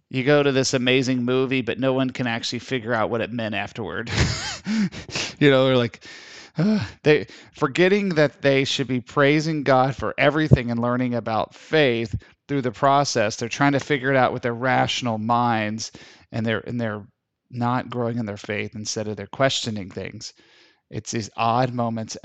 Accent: American